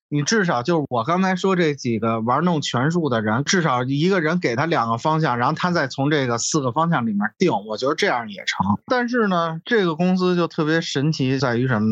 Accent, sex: native, male